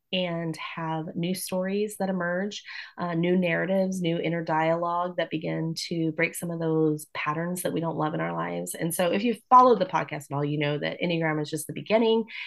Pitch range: 155-180 Hz